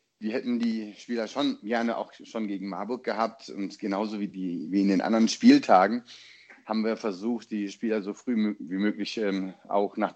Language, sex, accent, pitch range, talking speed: German, male, German, 100-115 Hz, 185 wpm